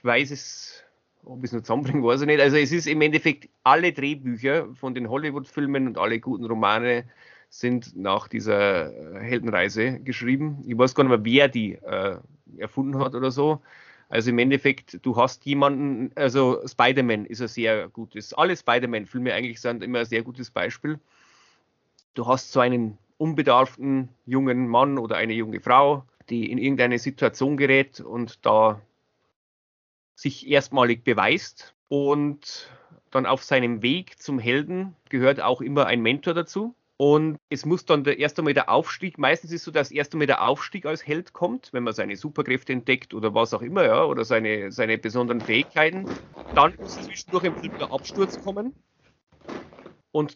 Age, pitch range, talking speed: 30-49, 120-150 Hz, 165 wpm